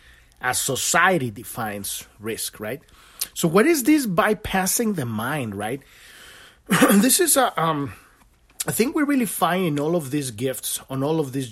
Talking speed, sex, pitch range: 160 wpm, male, 135-185 Hz